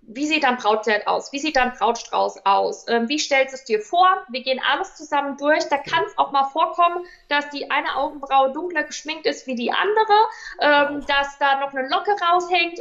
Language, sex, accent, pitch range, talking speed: German, female, German, 230-310 Hz, 210 wpm